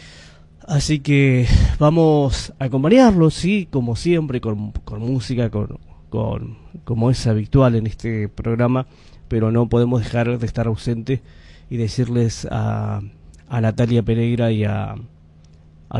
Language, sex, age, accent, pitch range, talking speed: Spanish, male, 30-49, Argentinian, 100-125 Hz, 130 wpm